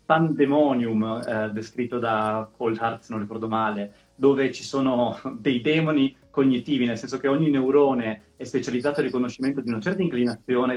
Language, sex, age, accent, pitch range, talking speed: Italian, male, 30-49, native, 115-150 Hz, 155 wpm